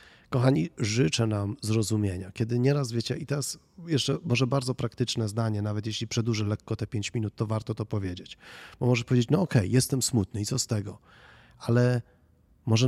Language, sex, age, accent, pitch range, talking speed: Polish, male, 30-49, native, 105-125 Hz, 180 wpm